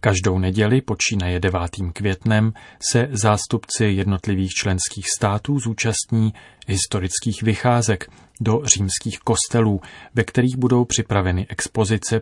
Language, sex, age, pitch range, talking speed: Czech, male, 30-49, 100-115 Hz, 105 wpm